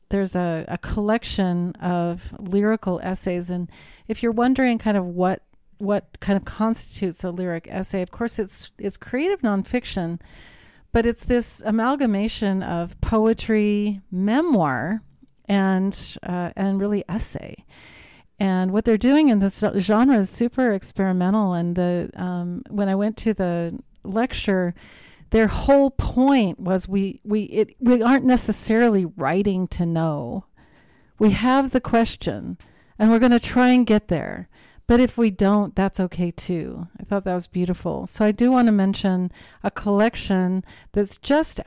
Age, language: 40-59, English